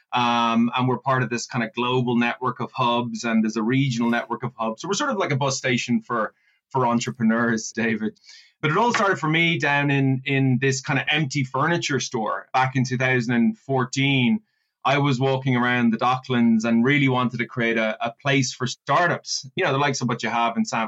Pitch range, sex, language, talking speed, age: 120-140 Hz, male, English, 220 wpm, 20-39